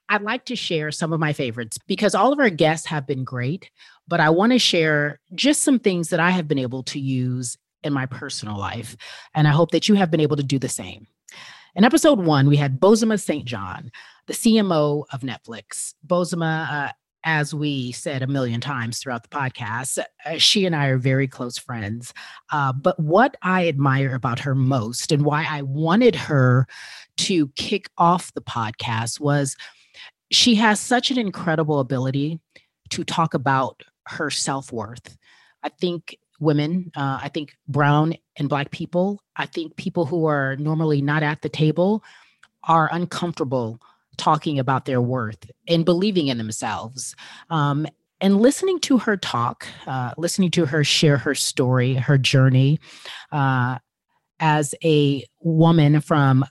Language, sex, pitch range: English, female, 130-170 Hz